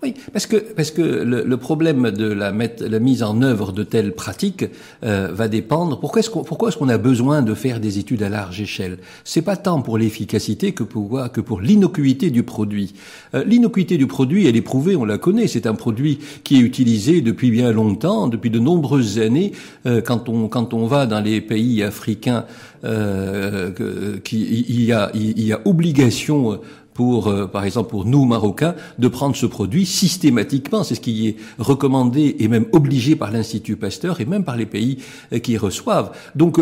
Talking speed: 200 wpm